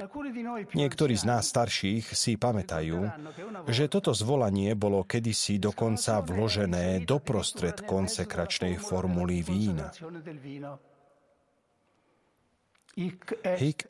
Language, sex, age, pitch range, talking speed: Slovak, male, 40-59, 95-155 Hz, 80 wpm